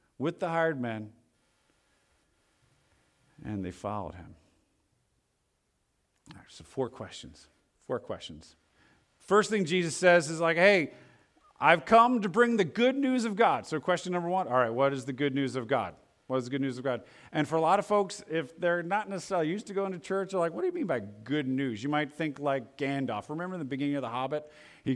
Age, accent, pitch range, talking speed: 40-59, American, 135-180 Hz, 205 wpm